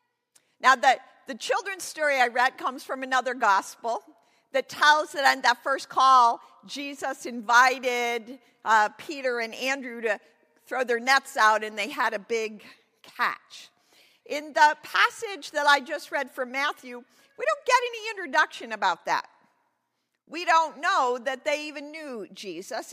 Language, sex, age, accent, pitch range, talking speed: English, female, 50-69, American, 240-320 Hz, 155 wpm